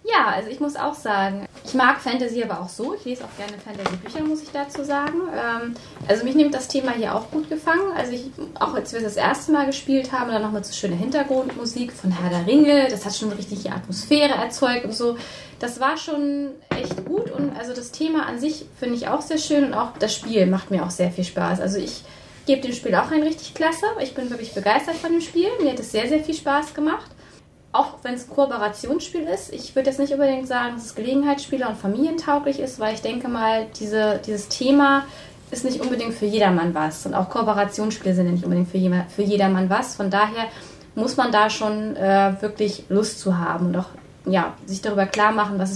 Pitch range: 210-280 Hz